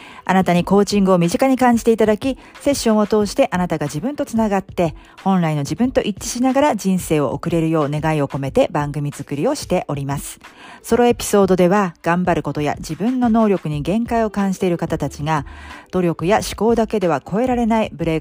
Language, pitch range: Japanese, 155-215 Hz